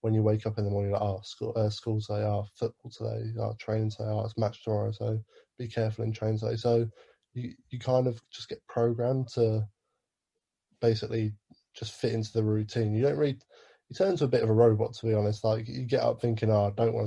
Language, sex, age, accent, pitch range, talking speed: English, male, 20-39, British, 110-115 Hz, 245 wpm